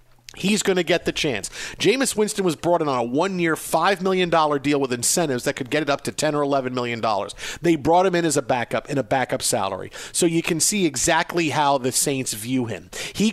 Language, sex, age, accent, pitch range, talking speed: English, male, 50-69, American, 145-180 Hz, 230 wpm